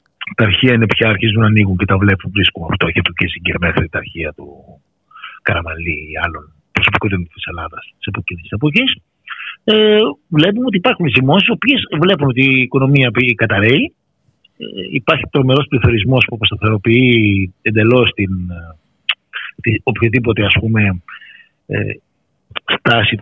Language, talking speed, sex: Greek, 135 wpm, male